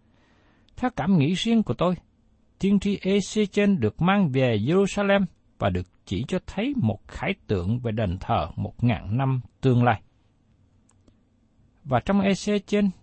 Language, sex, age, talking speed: Vietnamese, male, 60-79, 155 wpm